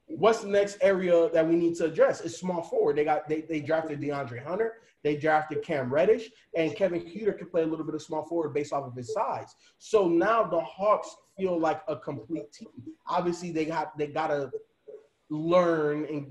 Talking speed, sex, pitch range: 200 wpm, male, 150-195 Hz